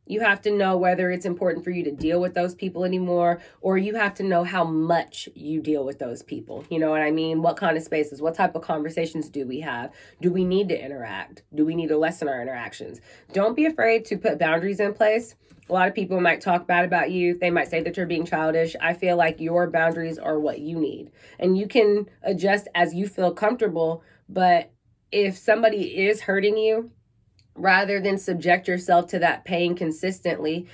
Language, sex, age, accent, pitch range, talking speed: English, female, 20-39, American, 160-195 Hz, 215 wpm